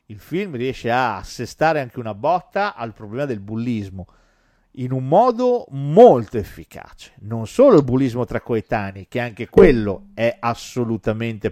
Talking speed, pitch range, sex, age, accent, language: 145 wpm, 100-135 Hz, male, 50-69, native, Italian